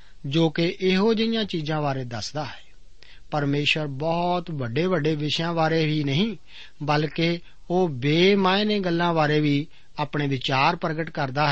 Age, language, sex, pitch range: 50-69, Punjabi, male, 135-175 Hz